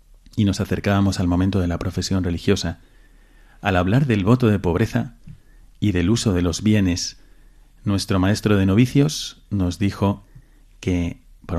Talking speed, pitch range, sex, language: 150 wpm, 90-110 Hz, male, Spanish